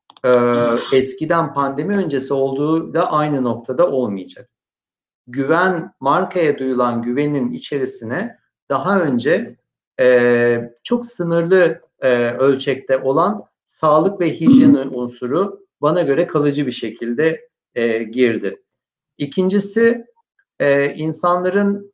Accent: native